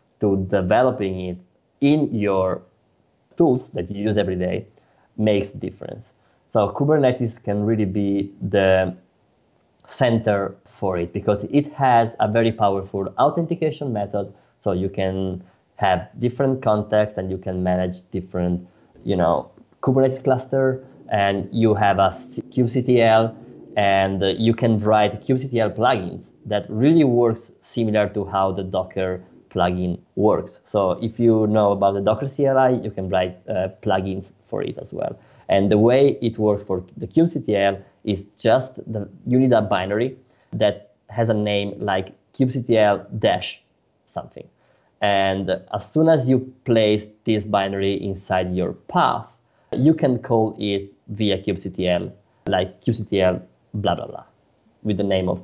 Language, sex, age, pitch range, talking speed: English, male, 20-39, 95-115 Hz, 145 wpm